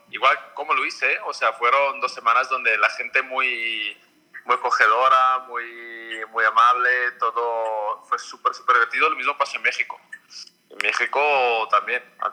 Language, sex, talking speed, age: Spanish, male, 155 wpm, 30-49